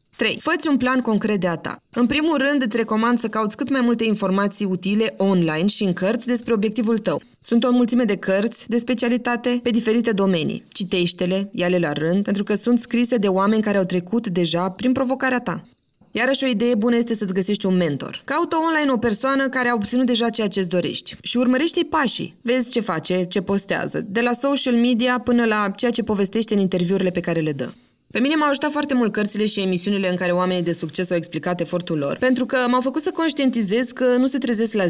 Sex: female